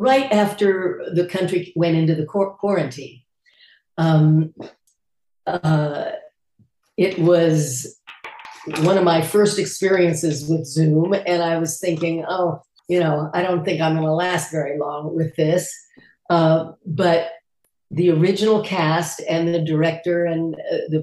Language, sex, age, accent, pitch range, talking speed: English, female, 50-69, American, 160-190 Hz, 135 wpm